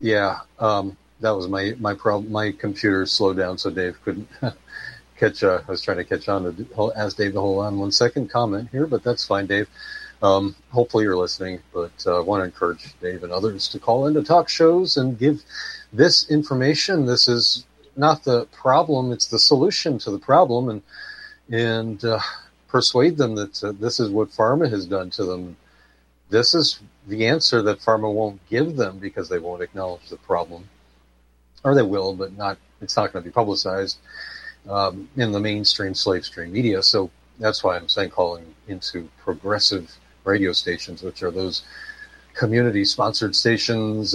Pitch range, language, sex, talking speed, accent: 90-120 Hz, English, male, 180 wpm, American